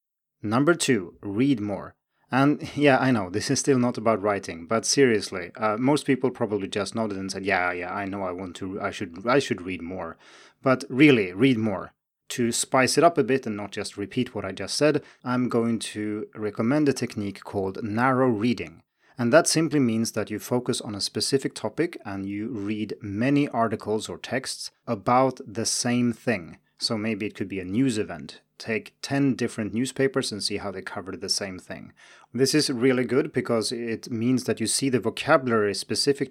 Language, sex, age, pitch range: Chinese, male, 30-49, 105-130 Hz